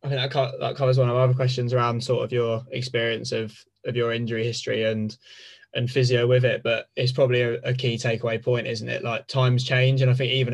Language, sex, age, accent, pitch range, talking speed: English, male, 20-39, British, 115-130 Hz, 235 wpm